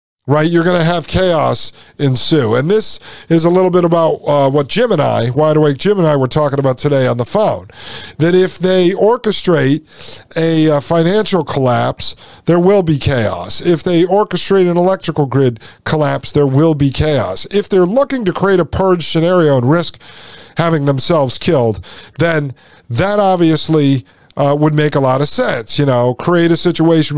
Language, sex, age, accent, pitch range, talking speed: English, male, 50-69, American, 135-175 Hz, 180 wpm